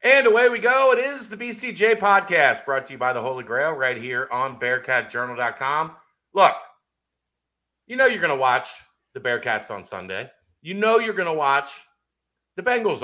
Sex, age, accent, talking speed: male, 50-69, American, 180 wpm